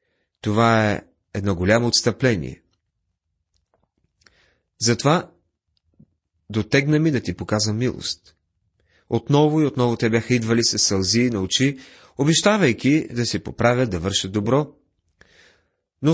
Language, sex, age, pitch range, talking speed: Bulgarian, male, 30-49, 90-130 Hz, 110 wpm